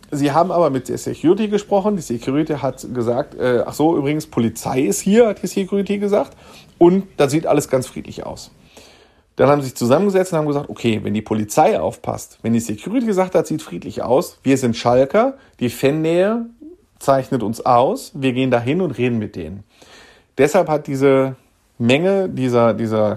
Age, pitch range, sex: 40-59, 120-170 Hz, male